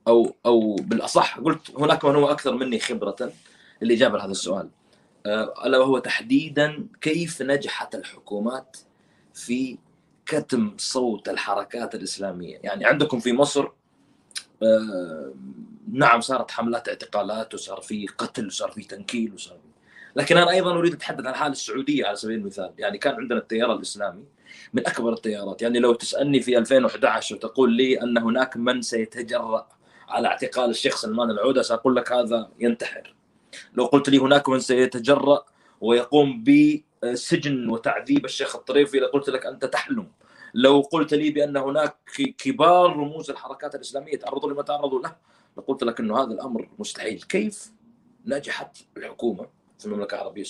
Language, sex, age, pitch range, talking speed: Arabic, male, 30-49, 120-150 Hz, 145 wpm